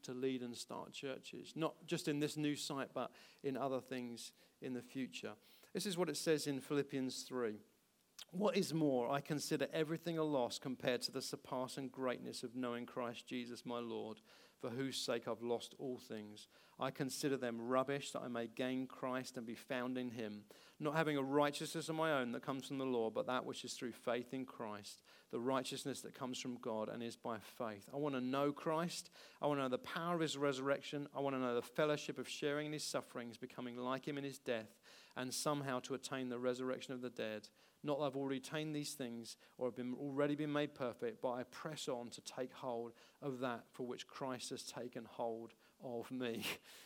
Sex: male